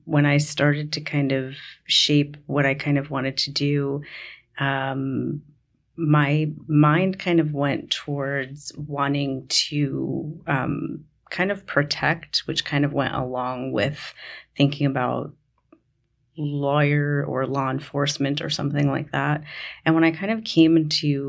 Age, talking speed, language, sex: 30-49, 140 wpm, English, female